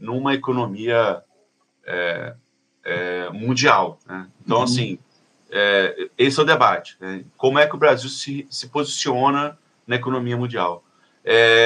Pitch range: 120-160 Hz